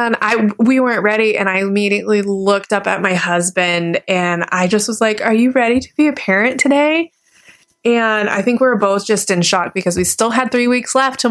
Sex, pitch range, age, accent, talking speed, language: female, 180-225 Hz, 20-39, American, 225 wpm, English